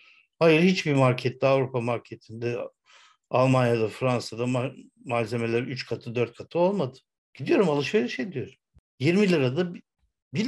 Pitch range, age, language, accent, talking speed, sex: 130-185 Hz, 60-79, Turkish, native, 110 wpm, male